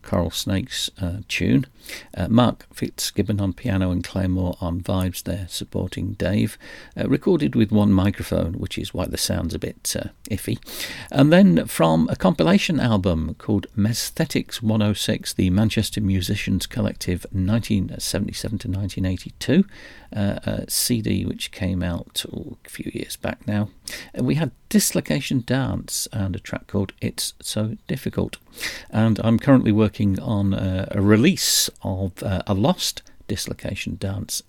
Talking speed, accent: 145 wpm, British